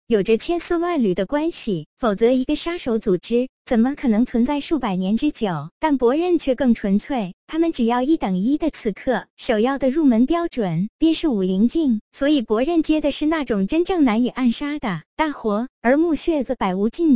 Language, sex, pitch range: Chinese, male, 215-295 Hz